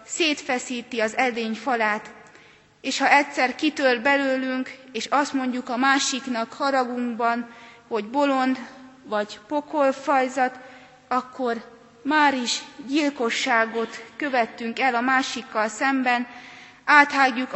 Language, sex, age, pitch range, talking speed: Hungarian, female, 20-39, 235-275 Hz, 100 wpm